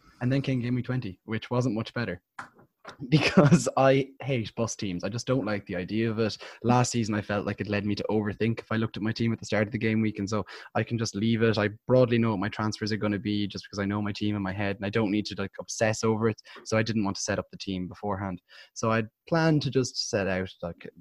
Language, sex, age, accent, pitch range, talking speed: English, male, 20-39, Irish, 95-115 Hz, 285 wpm